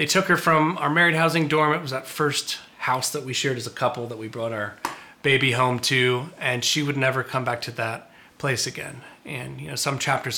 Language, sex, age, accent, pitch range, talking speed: English, male, 30-49, American, 120-145 Hz, 235 wpm